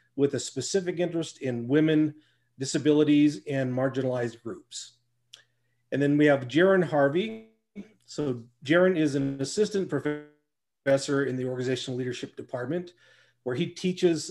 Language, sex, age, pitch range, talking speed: English, male, 40-59, 130-160 Hz, 125 wpm